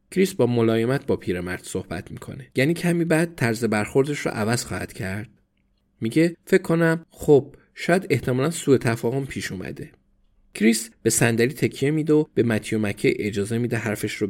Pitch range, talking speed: 110-145 Hz, 165 wpm